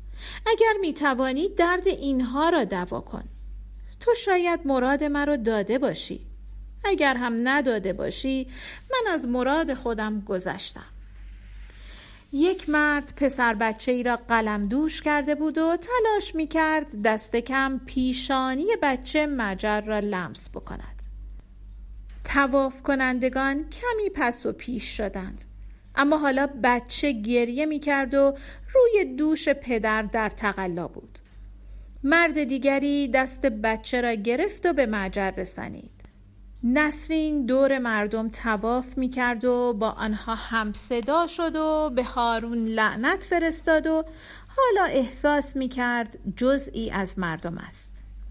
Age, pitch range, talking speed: 40-59, 225-300 Hz, 120 wpm